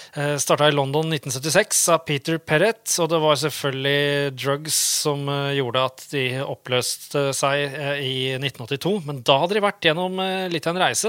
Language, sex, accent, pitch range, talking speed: English, male, Norwegian, 135-165 Hz, 155 wpm